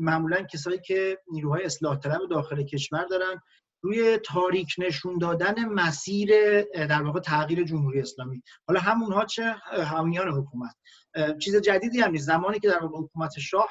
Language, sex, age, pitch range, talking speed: Persian, male, 40-59, 155-190 Hz, 145 wpm